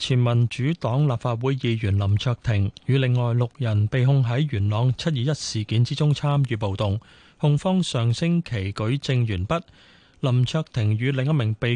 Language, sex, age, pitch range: Chinese, male, 20-39, 110-145 Hz